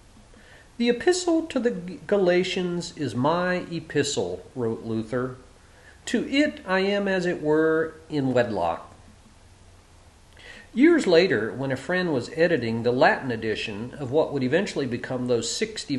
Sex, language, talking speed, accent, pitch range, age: male, English, 135 wpm, American, 110-180 Hz, 50-69